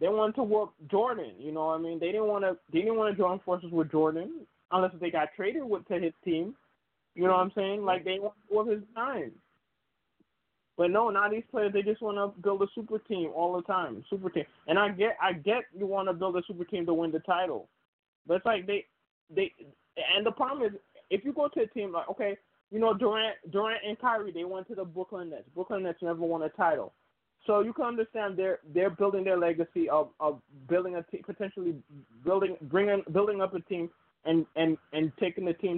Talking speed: 230 wpm